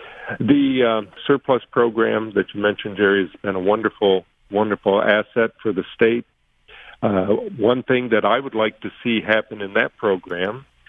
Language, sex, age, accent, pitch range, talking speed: English, male, 50-69, American, 95-110 Hz, 165 wpm